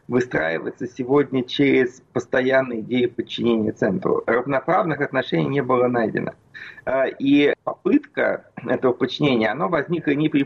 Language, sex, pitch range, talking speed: Russian, male, 120-145 Hz, 115 wpm